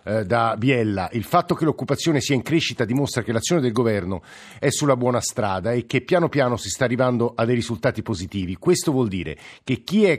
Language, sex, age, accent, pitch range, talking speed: Italian, male, 50-69, native, 115-140 Hz, 205 wpm